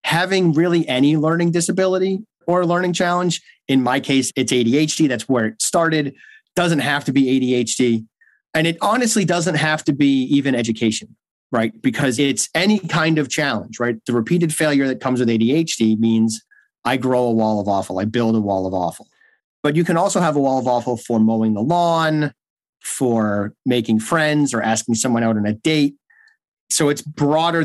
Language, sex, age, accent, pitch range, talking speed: English, male, 30-49, American, 115-155 Hz, 185 wpm